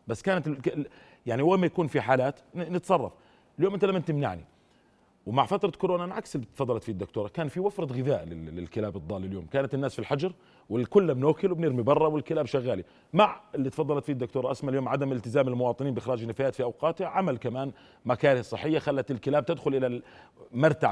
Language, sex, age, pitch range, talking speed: Arabic, male, 40-59, 125-155 Hz, 175 wpm